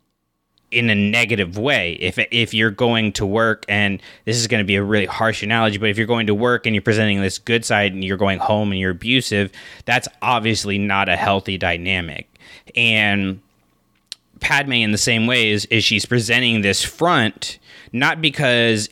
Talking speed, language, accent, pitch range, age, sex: 185 wpm, English, American, 100-120 Hz, 20-39, male